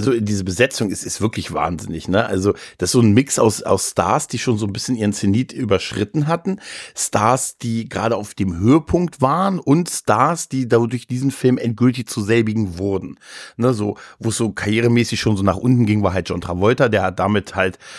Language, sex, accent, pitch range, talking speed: German, male, German, 95-115 Hz, 205 wpm